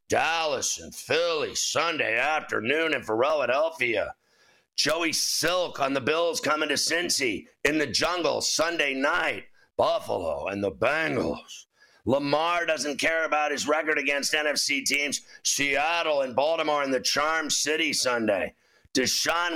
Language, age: English, 50-69